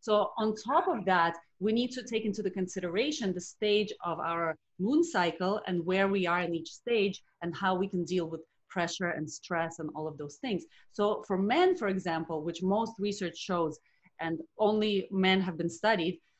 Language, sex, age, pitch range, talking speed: English, female, 30-49, 175-210 Hz, 200 wpm